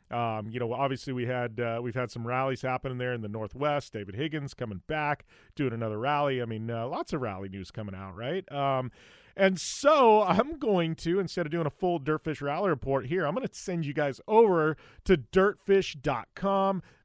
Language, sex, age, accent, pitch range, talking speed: English, male, 40-59, American, 130-195 Hz, 210 wpm